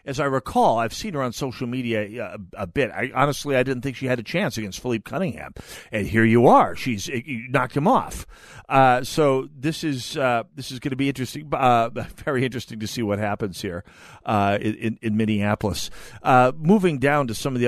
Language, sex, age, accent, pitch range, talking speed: English, male, 50-69, American, 105-130 Hz, 215 wpm